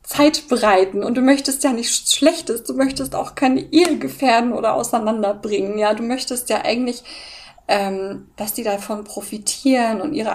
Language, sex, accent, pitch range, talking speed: German, female, German, 195-240 Hz, 160 wpm